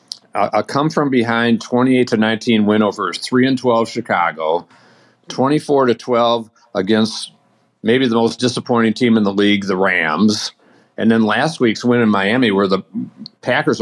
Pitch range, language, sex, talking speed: 110-125 Hz, English, male, 160 wpm